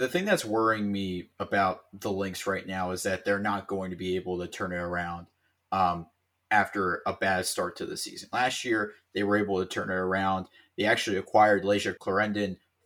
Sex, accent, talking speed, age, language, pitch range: male, American, 205 wpm, 30-49, English, 95-115 Hz